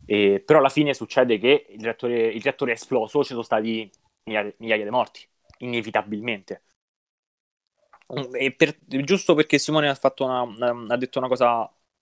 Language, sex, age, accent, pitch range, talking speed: Italian, male, 20-39, native, 115-135 Hz, 155 wpm